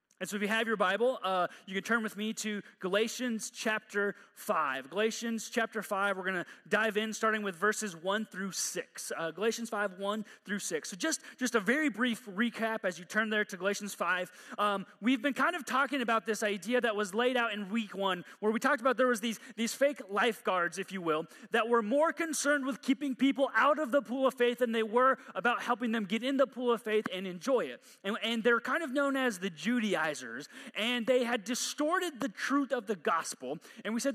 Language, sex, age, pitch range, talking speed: English, male, 30-49, 210-255 Hz, 225 wpm